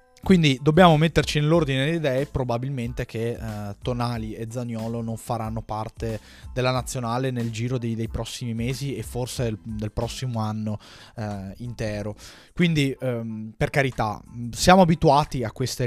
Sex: male